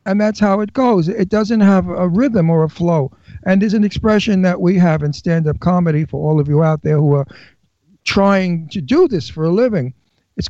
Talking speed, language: 225 wpm, English